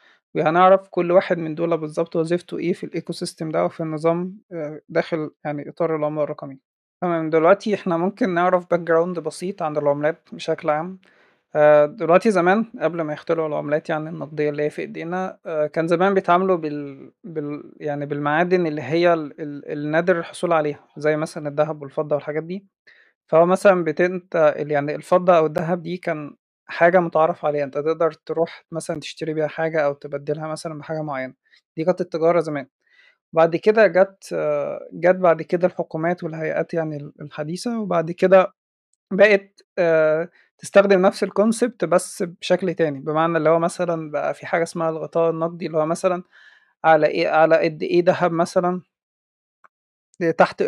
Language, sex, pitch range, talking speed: Arabic, male, 155-180 Hz, 155 wpm